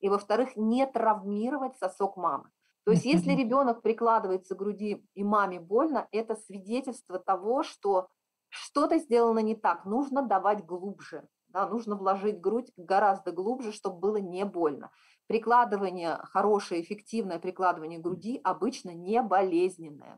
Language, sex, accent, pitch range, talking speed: Ukrainian, female, native, 180-225 Hz, 135 wpm